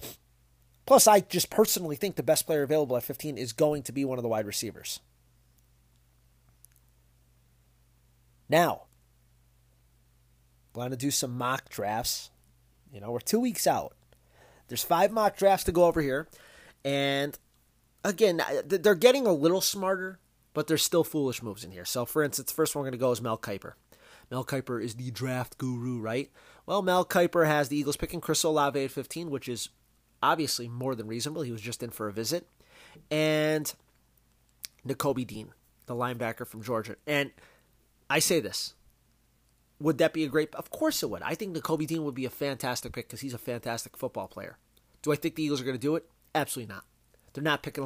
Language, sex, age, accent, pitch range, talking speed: English, male, 30-49, American, 115-155 Hz, 190 wpm